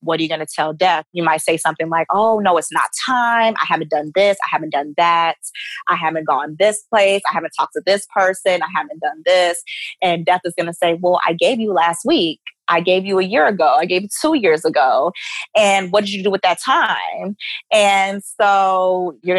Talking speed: 230 wpm